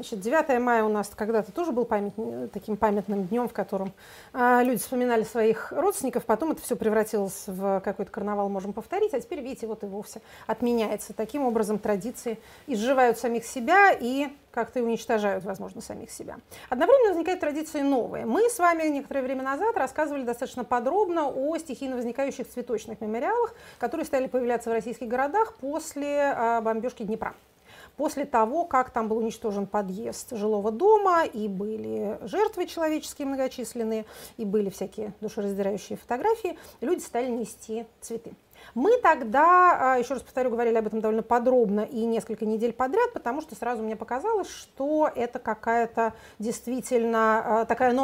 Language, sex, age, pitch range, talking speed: Russian, female, 30-49, 220-275 Hz, 150 wpm